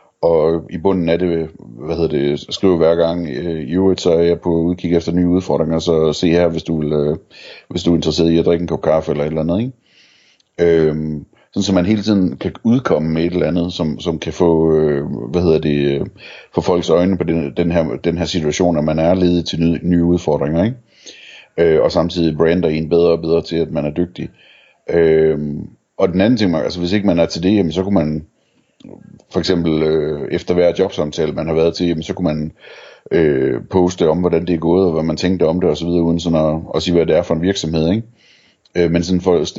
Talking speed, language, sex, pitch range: 235 wpm, Danish, male, 80-90 Hz